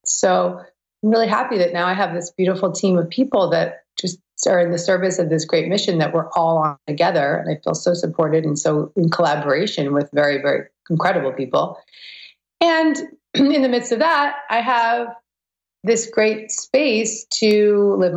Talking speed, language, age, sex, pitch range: 180 wpm, English, 30-49, female, 145-185 Hz